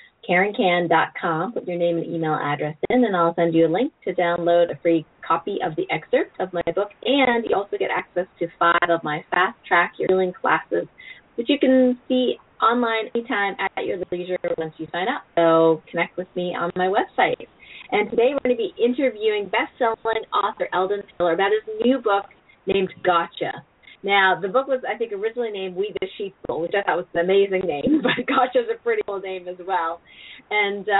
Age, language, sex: 30-49, English, female